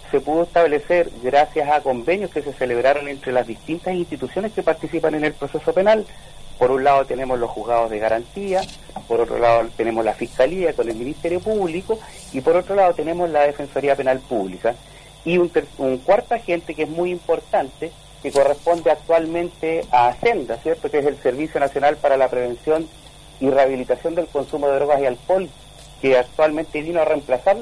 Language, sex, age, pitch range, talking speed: Spanish, male, 50-69, 135-170 Hz, 175 wpm